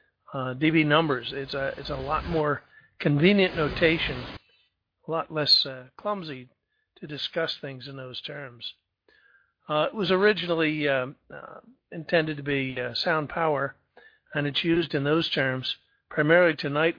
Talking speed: 150 wpm